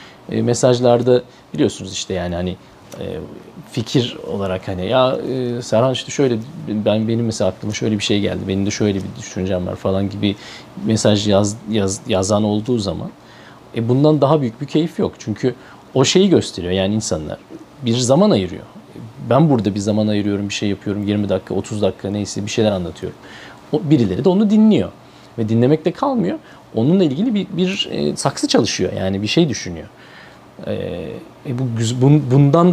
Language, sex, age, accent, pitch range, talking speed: Turkish, male, 40-59, native, 100-135 Hz, 155 wpm